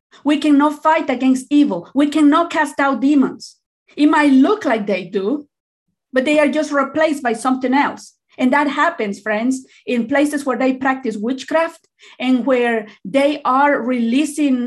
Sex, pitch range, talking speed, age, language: female, 230-295 Hz, 160 wpm, 40-59, English